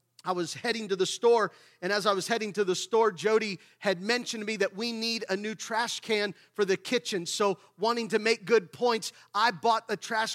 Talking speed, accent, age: 225 wpm, American, 30-49